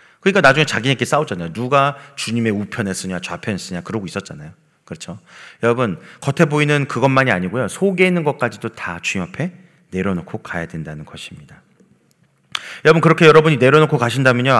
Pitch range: 115-160 Hz